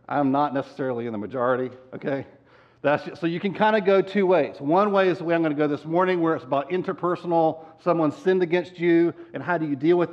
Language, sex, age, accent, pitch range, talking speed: English, male, 50-69, American, 120-170 Hz, 235 wpm